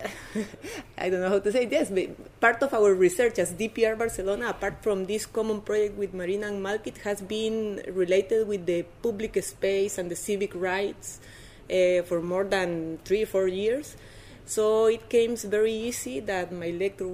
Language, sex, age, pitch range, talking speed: English, female, 30-49, 175-215 Hz, 180 wpm